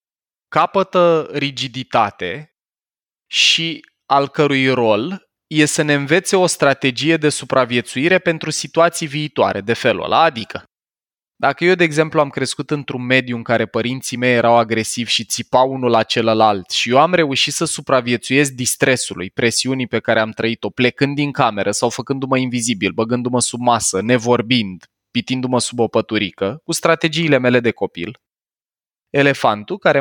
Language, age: Romanian, 20-39